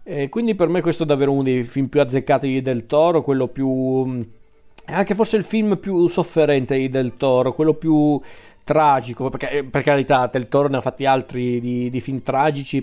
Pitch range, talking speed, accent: 125-155 Hz, 190 wpm, native